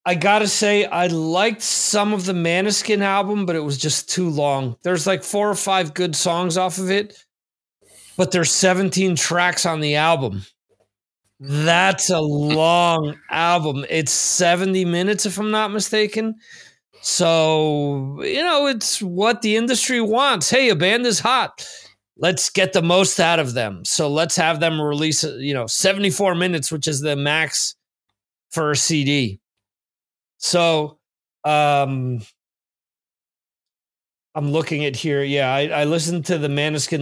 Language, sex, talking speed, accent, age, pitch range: English, male, 150 wpm, American, 30-49, 140-185 Hz